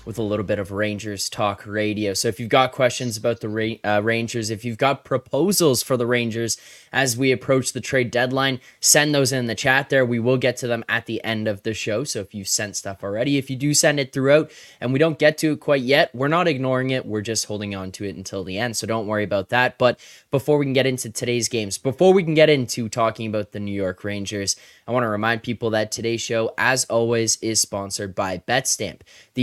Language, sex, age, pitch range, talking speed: English, male, 20-39, 105-125 Hz, 245 wpm